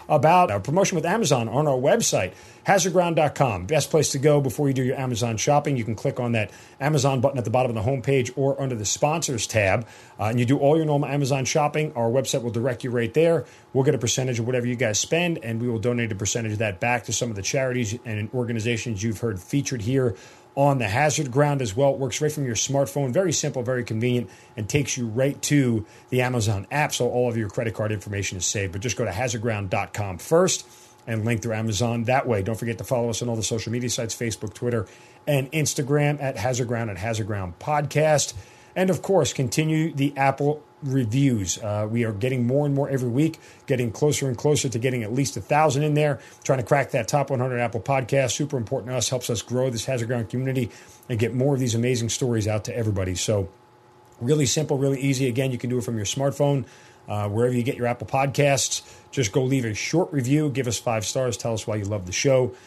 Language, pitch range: English, 115-140 Hz